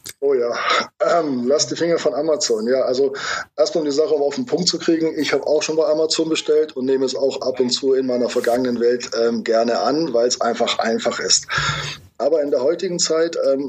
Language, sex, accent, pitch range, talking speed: German, male, German, 125-150 Hz, 225 wpm